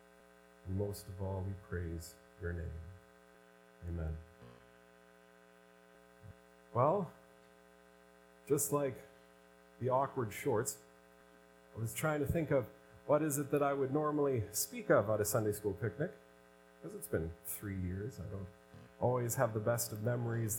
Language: English